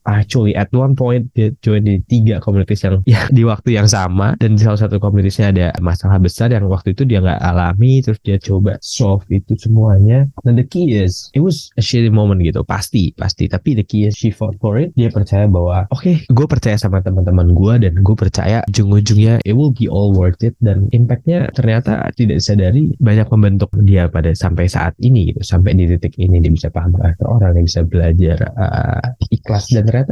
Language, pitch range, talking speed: Indonesian, 95-120 Hz, 200 wpm